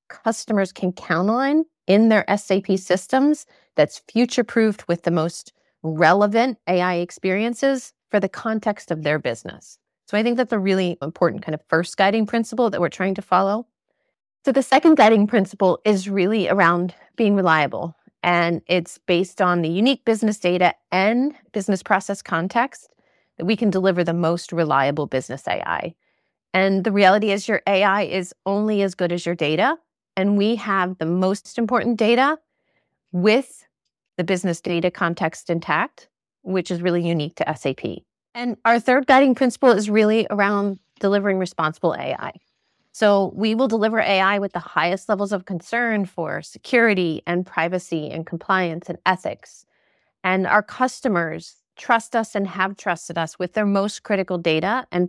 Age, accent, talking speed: 30-49, American, 160 wpm